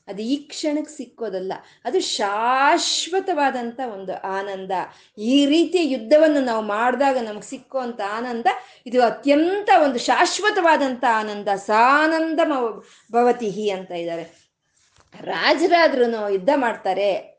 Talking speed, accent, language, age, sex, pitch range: 95 wpm, native, Kannada, 30-49, female, 220-315 Hz